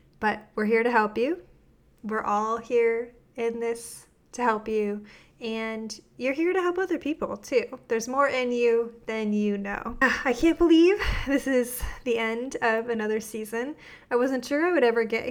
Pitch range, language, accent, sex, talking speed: 215-255 Hz, English, American, female, 180 wpm